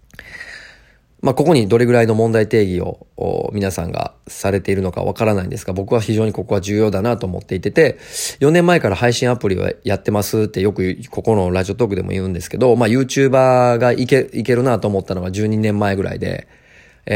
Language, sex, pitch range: Japanese, male, 95-125 Hz